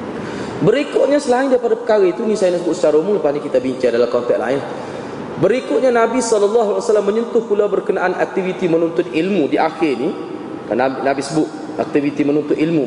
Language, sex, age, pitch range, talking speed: Malay, male, 30-49, 150-225 Hz, 175 wpm